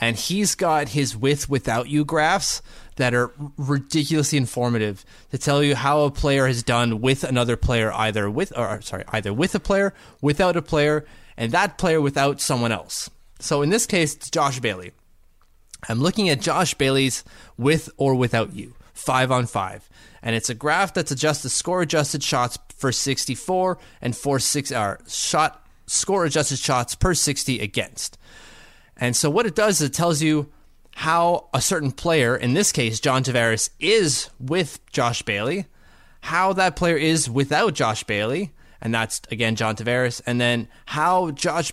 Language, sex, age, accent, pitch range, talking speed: English, male, 20-39, American, 120-155 Hz, 170 wpm